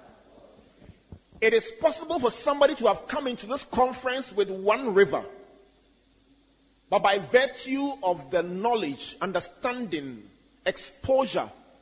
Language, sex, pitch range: English, male, 170-240 Hz